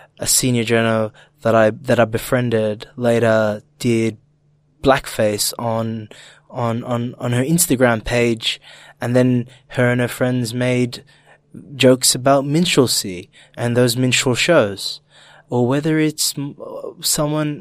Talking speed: 125 wpm